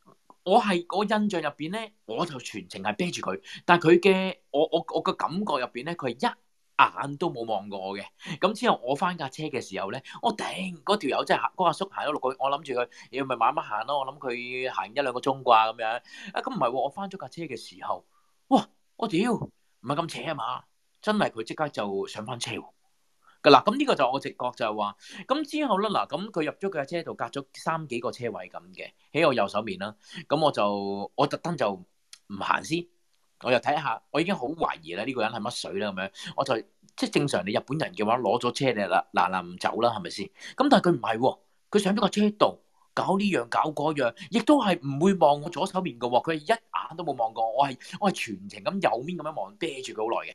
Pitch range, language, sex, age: 125-200 Hz, Japanese, male, 30-49